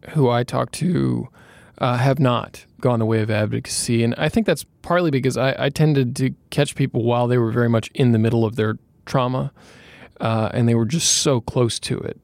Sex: male